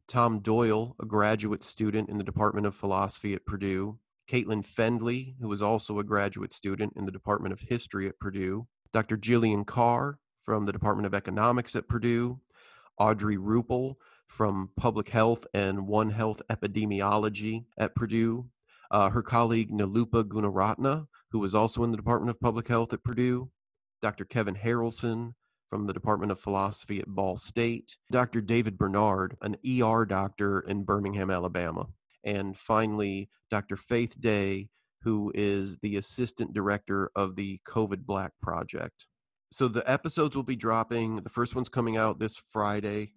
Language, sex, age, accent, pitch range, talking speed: English, male, 30-49, American, 100-115 Hz, 155 wpm